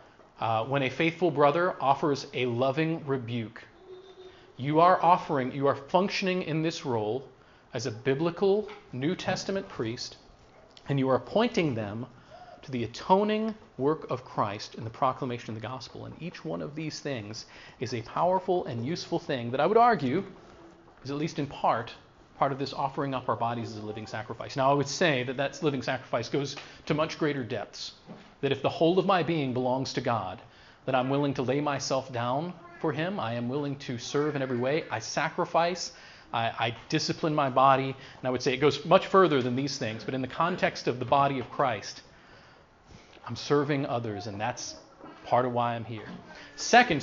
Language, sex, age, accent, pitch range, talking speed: English, male, 40-59, American, 130-170 Hz, 195 wpm